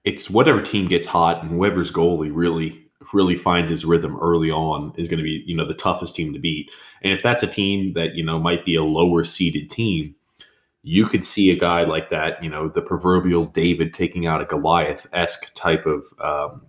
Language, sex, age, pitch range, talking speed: English, male, 20-39, 80-90 Hz, 200 wpm